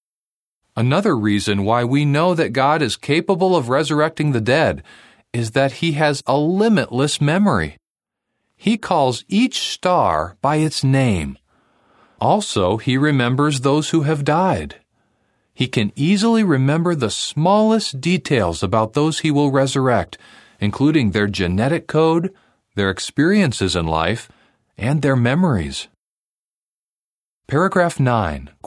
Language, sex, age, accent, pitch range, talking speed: English, male, 40-59, American, 105-160 Hz, 125 wpm